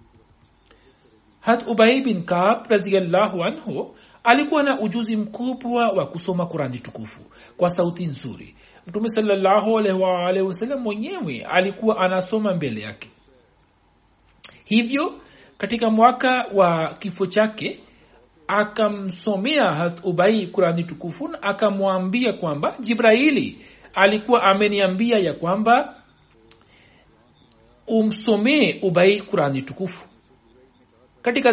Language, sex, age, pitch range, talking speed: Swahili, male, 60-79, 185-230 Hz, 95 wpm